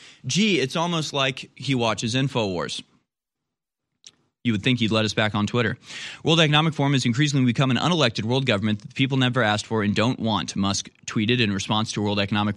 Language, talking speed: English, 195 wpm